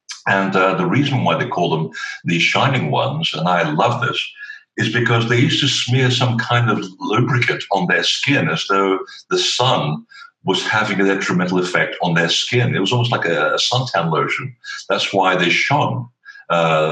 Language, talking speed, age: English, 185 wpm, 60-79